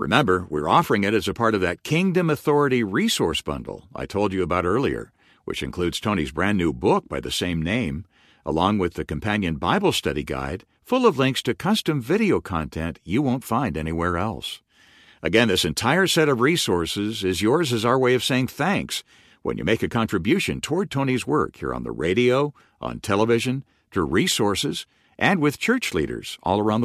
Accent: American